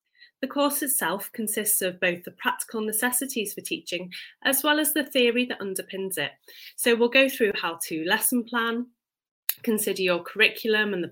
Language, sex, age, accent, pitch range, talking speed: English, female, 30-49, British, 180-240 Hz, 175 wpm